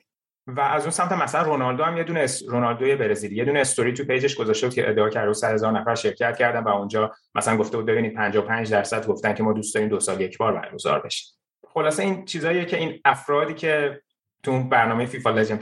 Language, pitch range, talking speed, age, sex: Persian, 105-125 Hz, 225 wpm, 30-49, male